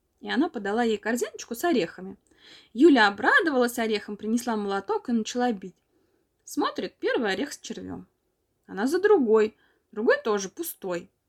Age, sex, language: 20-39, female, Russian